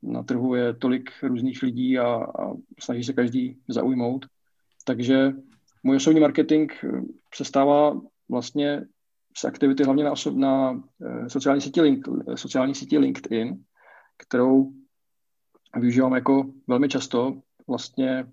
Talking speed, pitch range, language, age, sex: 110 wpm, 120-140 Hz, Czech, 40-59, male